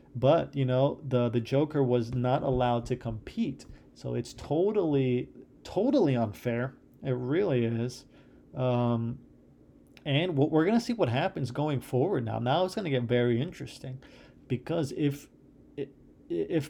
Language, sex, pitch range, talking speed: English, male, 125-145 Hz, 135 wpm